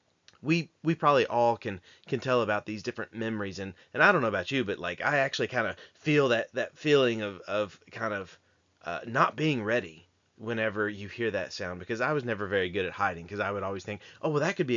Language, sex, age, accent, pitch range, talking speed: English, male, 30-49, American, 105-135 Hz, 235 wpm